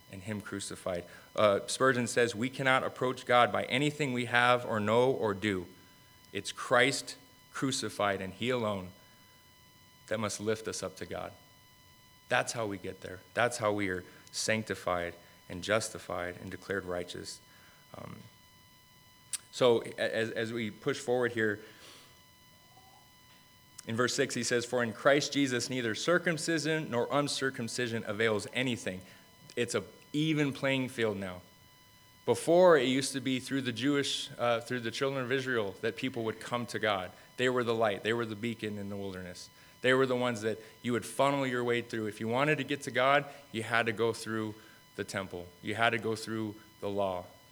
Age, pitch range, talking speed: 30-49, 105-130 Hz, 175 wpm